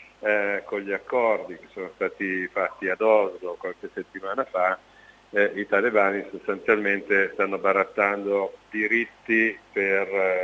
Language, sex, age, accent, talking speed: Italian, male, 50-69, native, 125 wpm